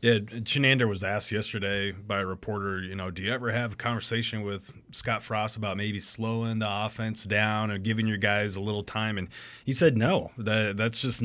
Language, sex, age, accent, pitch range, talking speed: English, male, 30-49, American, 100-115 Hz, 210 wpm